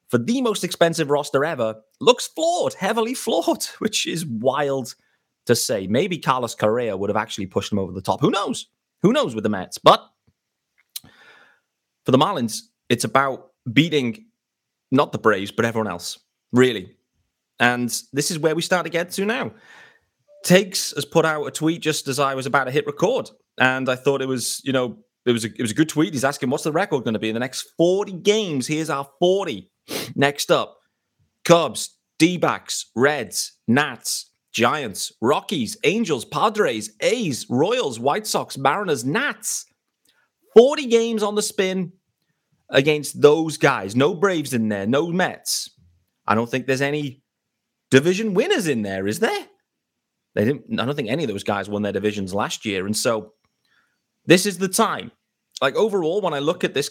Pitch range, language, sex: 120-180 Hz, English, male